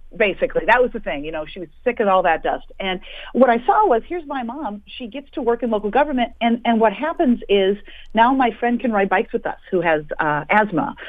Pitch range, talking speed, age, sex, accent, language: 190-255 Hz, 250 wpm, 50-69, female, American, English